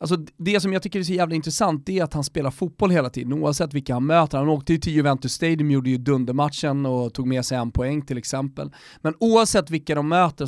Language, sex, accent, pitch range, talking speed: Swedish, male, native, 135-175 Hz, 240 wpm